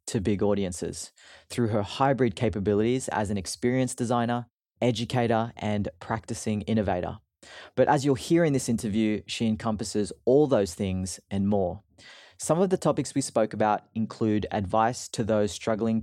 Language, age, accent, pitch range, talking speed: English, 20-39, Australian, 105-135 Hz, 155 wpm